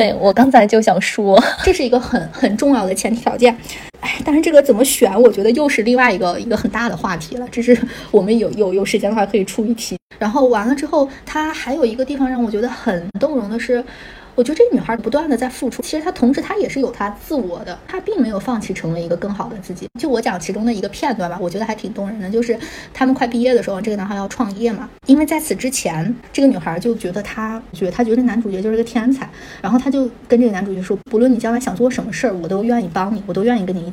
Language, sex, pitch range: Chinese, female, 200-250 Hz